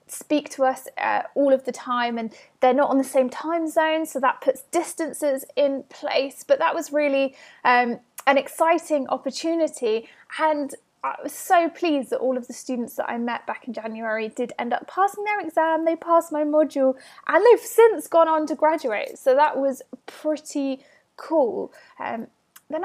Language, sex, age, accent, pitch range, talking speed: English, female, 20-39, British, 260-330 Hz, 185 wpm